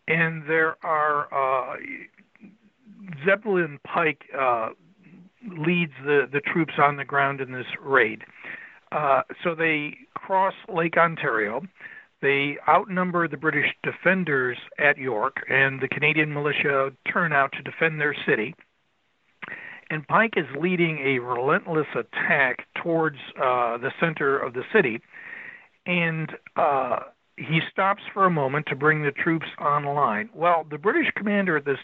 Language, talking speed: English, 135 wpm